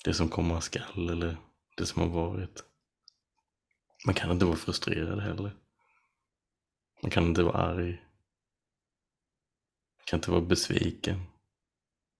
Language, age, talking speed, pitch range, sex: Swedish, 20-39, 130 wpm, 85-100 Hz, male